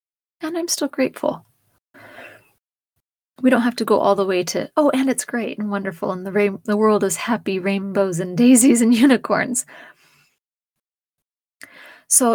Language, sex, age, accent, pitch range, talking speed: English, female, 30-49, American, 195-240 Hz, 155 wpm